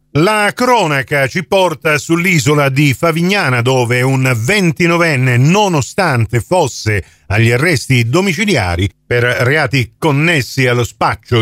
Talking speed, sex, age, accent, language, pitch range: 105 wpm, male, 50-69, native, Italian, 120-175 Hz